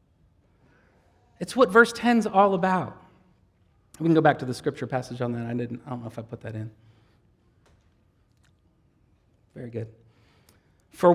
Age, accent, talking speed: 40-59, American, 155 wpm